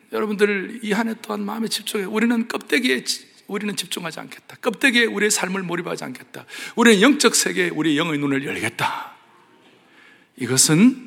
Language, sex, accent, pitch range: Korean, male, native, 155-225 Hz